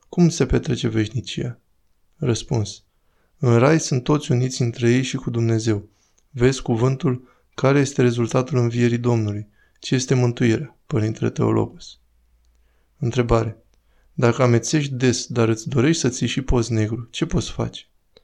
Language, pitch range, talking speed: Romanian, 110-130 Hz, 140 wpm